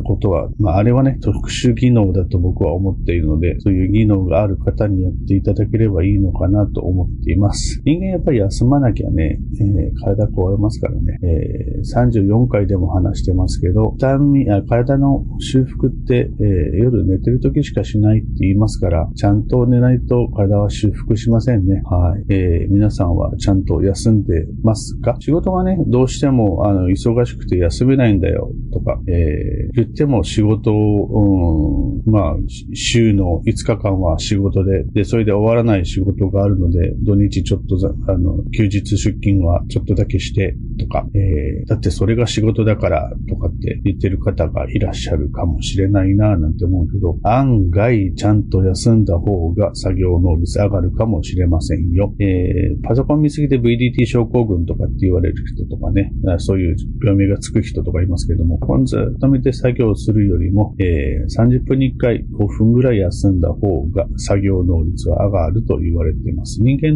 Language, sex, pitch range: Japanese, male, 95-120 Hz